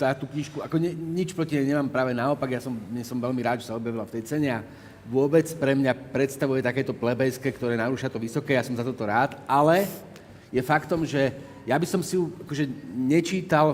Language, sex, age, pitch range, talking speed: Slovak, male, 40-59, 125-155 Hz, 210 wpm